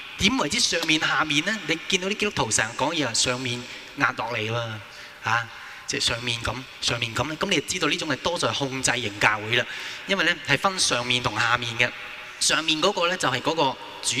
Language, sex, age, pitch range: Chinese, male, 20-39, 125-190 Hz